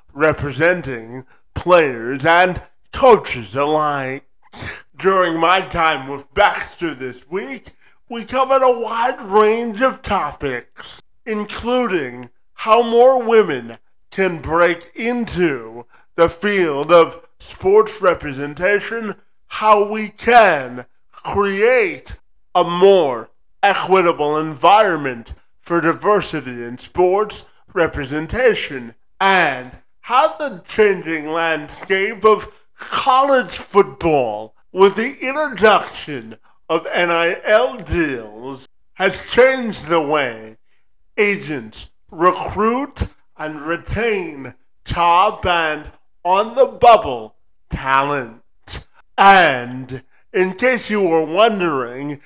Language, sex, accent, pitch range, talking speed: English, male, American, 145-215 Hz, 85 wpm